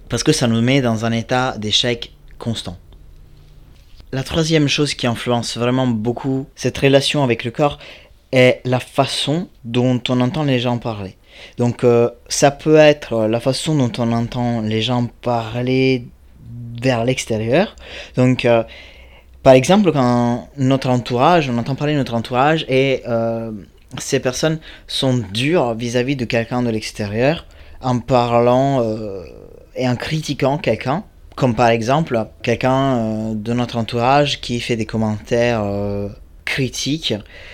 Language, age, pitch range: French, 20-39, 110-130 Hz